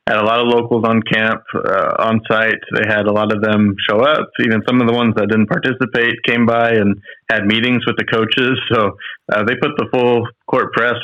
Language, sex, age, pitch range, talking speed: English, male, 20-39, 105-115 Hz, 230 wpm